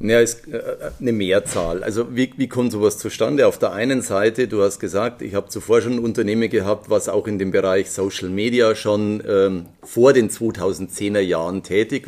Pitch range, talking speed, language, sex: 105-120 Hz, 185 wpm, German, male